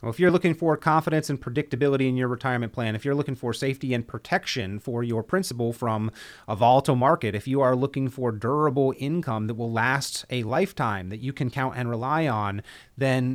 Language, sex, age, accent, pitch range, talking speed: English, male, 30-49, American, 125-160 Hz, 205 wpm